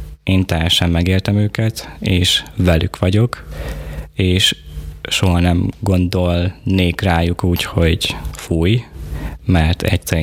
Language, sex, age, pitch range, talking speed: Hungarian, male, 20-39, 80-100 Hz, 100 wpm